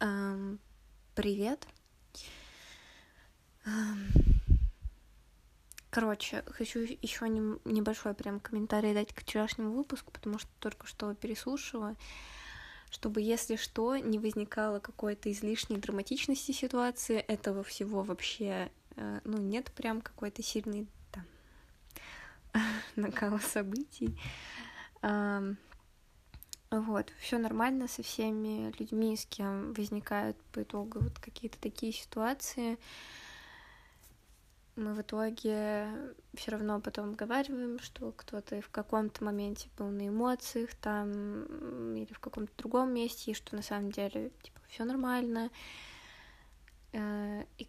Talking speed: 100 wpm